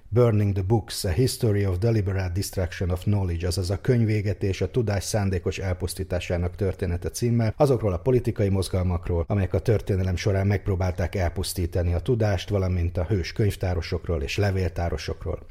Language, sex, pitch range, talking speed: Hungarian, male, 85-105 Hz, 145 wpm